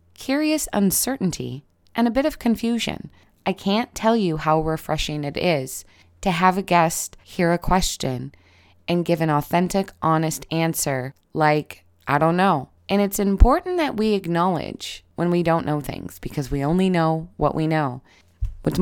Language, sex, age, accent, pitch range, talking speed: English, female, 20-39, American, 135-190 Hz, 165 wpm